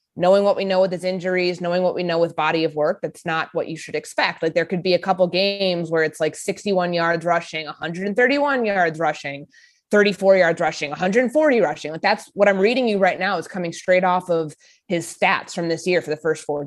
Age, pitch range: 20-39, 160-195 Hz